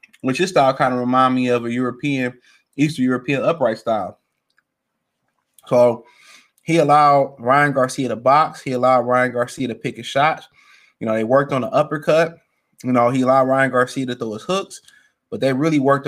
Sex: male